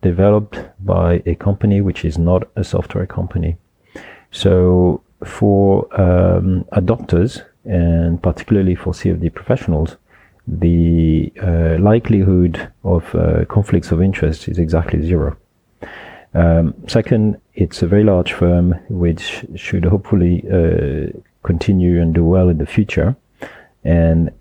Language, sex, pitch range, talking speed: English, male, 85-100 Hz, 120 wpm